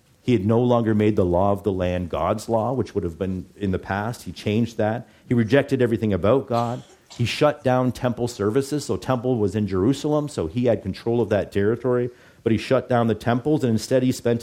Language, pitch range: English, 95-120 Hz